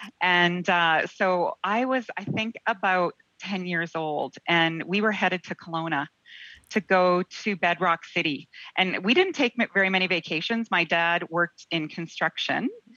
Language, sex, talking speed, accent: English, female, 155 wpm, American